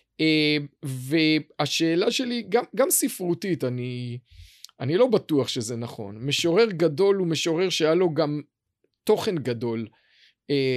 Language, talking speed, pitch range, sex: Hebrew, 125 wpm, 145-200 Hz, male